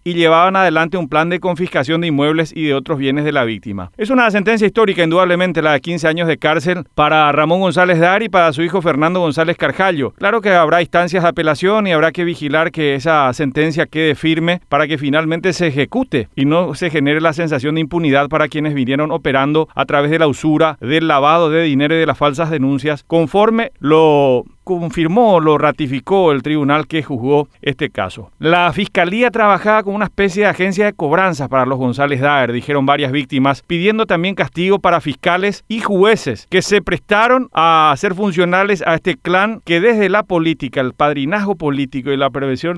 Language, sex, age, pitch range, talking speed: Spanish, male, 40-59, 150-185 Hz, 195 wpm